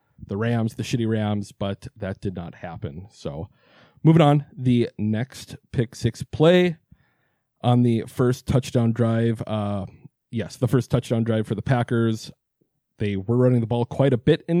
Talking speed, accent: 170 wpm, American